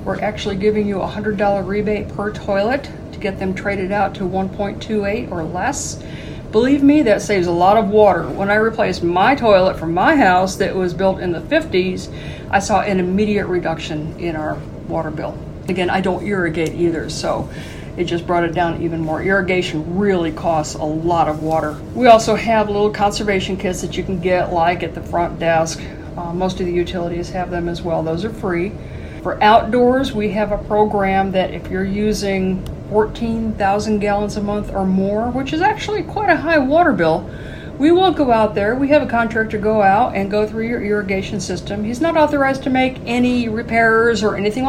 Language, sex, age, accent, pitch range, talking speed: English, female, 50-69, American, 180-225 Hz, 195 wpm